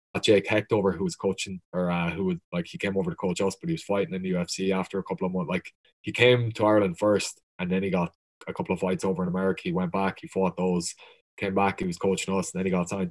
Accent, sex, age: Irish, male, 20-39